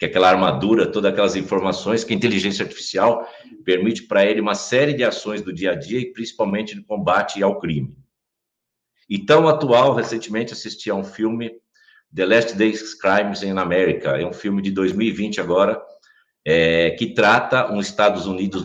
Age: 60-79